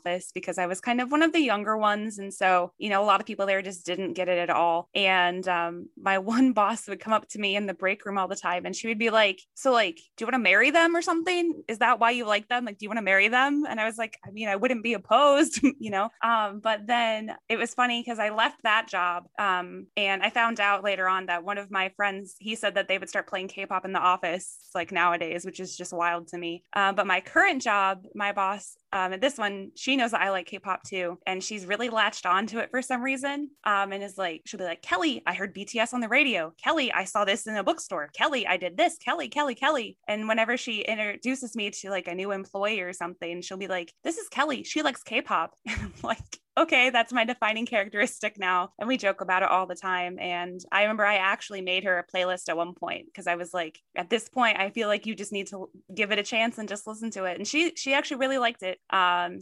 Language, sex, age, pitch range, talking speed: English, female, 20-39, 185-230 Hz, 265 wpm